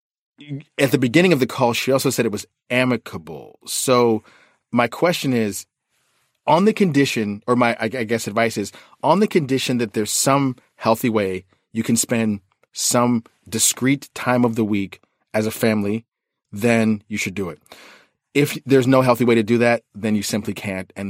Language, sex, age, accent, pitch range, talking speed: English, male, 30-49, American, 105-125 Hz, 180 wpm